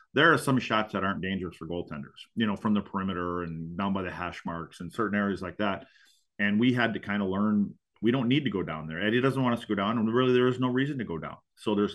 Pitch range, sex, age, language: 100-120 Hz, male, 40-59, English